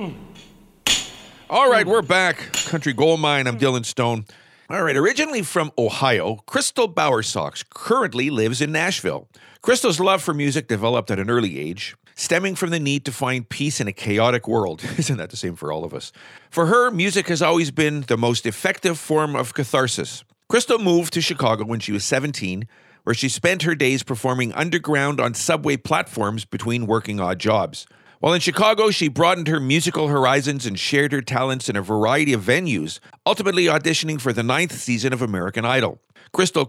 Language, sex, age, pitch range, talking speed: English, male, 50-69, 120-170 Hz, 180 wpm